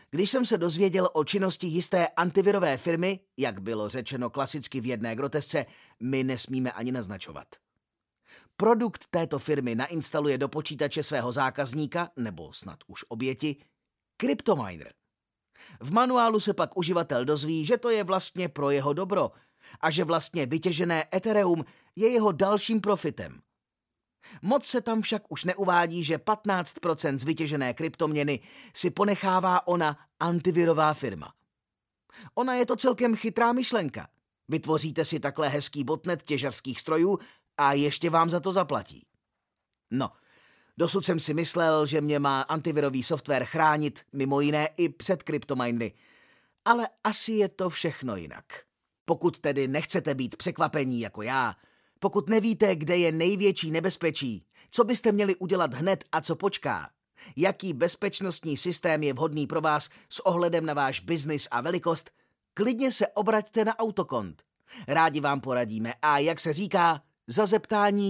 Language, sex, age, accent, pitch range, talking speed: Czech, male, 30-49, native, 145-195 Hz, 140 wpm